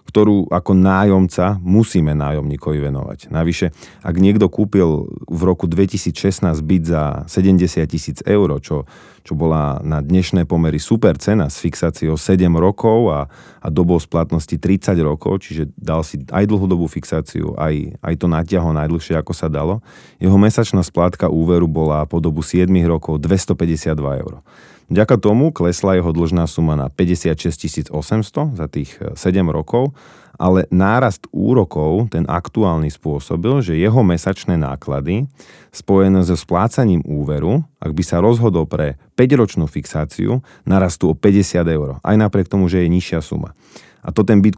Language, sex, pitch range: Slovak, male, 80-100 Hz